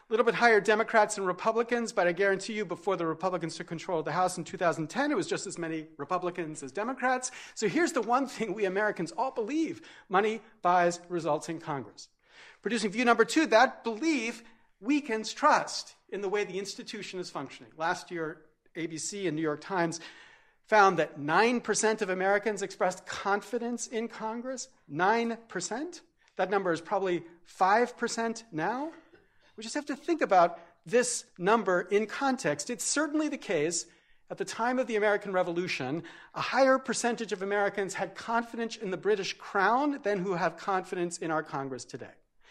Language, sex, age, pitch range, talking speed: English, male, 40-59, 165-230 Hz, 170 wpm